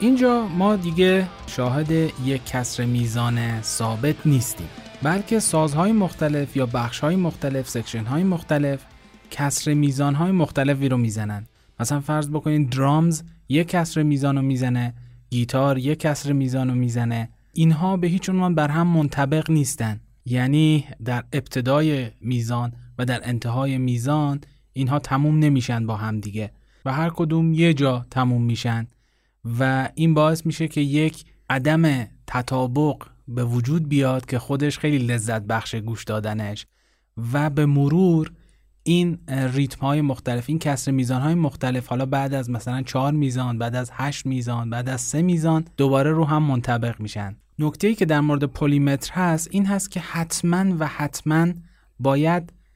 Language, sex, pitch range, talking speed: Persian, male, 125-155 Hz, 145 wpm